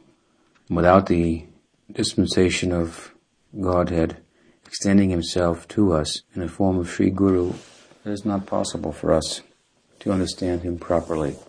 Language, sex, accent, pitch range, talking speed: English, male, American, 85-95 Hz, 130 wpm